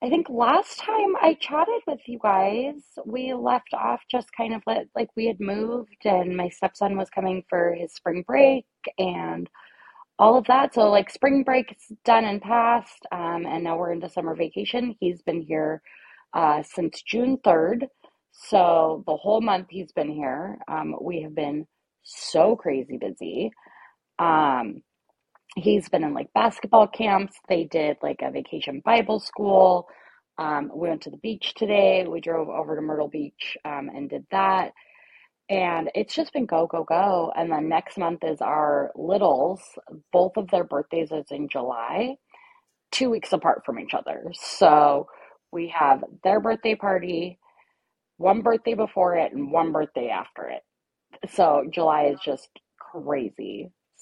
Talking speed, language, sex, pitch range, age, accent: 160 wpm, English, female, 165-230 Hz, 20-39, American